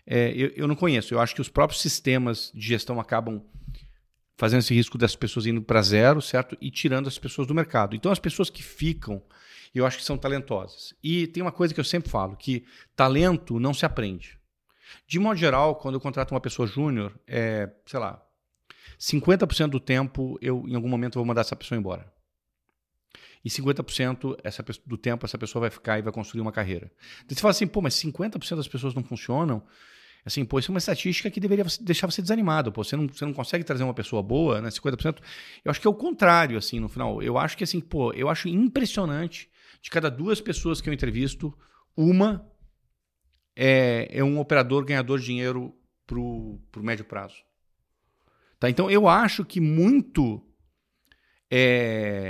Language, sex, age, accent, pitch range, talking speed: English, male, 40-59, Brazilian, 115-160 Hz, 190 wpm